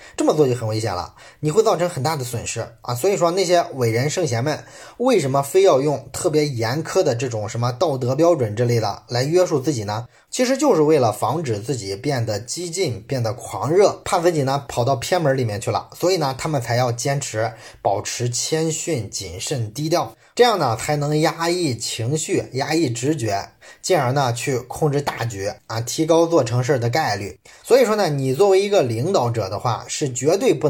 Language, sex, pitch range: Chinese, male, 115-155 Hz